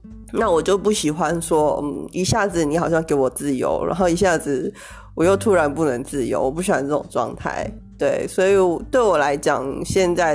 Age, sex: 20-39, female